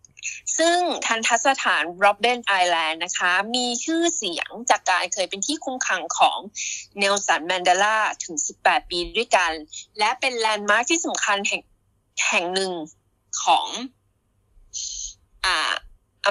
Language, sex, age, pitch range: Thai, female, 20-39, 185-255 Hz